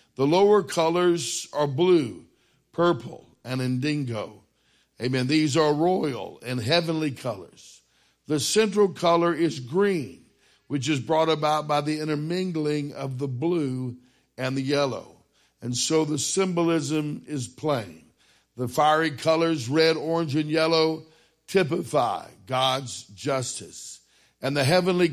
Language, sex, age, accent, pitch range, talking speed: English, male, 60-79, American, 130-160 Hz, 125 wpm